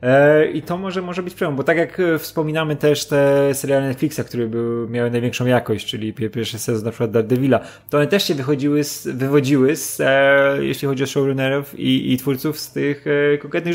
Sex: male